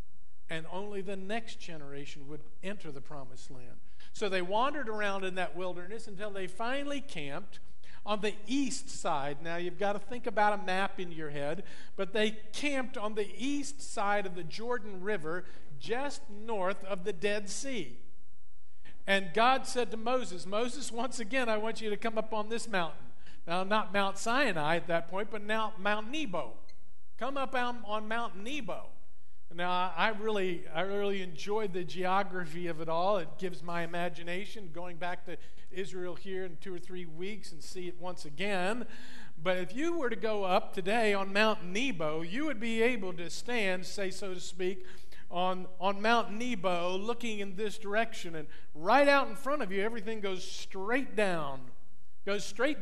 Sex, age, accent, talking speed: male, 50-69, American, 180 wpm